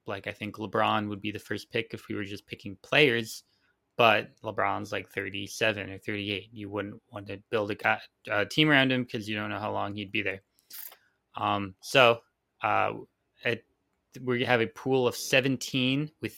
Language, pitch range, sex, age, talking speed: English, 105-115 Hz, male, 20-39, 190 wpm